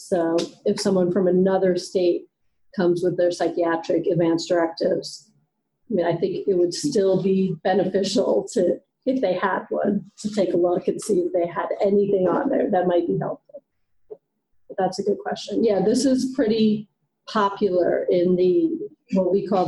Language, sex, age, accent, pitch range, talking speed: English, female, 40-59, American, 180-205 Hz, 170 wpm